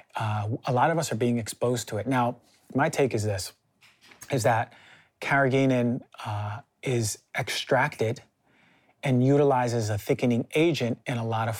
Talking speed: 155 wpm